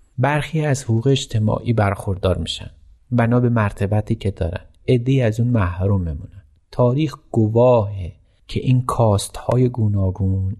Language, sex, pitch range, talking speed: Persian, male, 100-120 Hz, 125 wpm